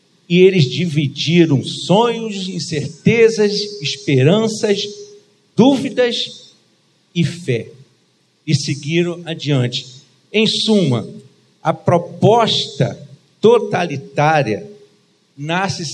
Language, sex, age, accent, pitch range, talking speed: Portuguese, male, 50-69, Brazilian, 150-210 Hz, 70 wpm